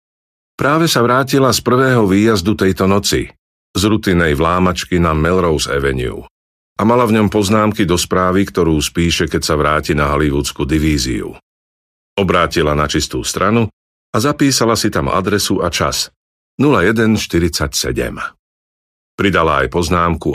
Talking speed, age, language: 130 wpm, 50-69, Slovak